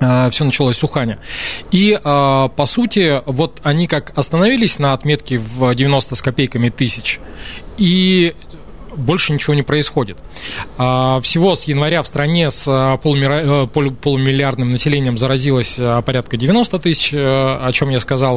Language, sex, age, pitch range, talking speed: Russian, male, 20-39, 125-155 Hz, 125 wpm